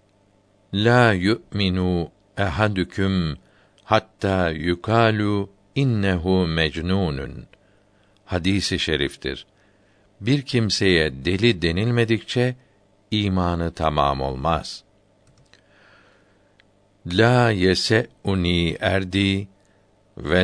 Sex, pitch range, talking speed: male, 90-105 Hz, 65 wpm